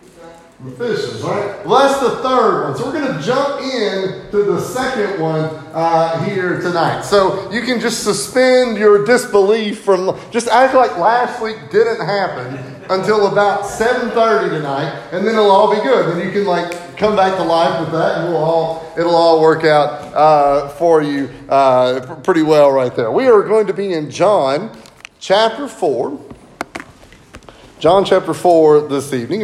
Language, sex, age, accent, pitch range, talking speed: English, male, 30-49, American, 155-205 Hz, 170 wpm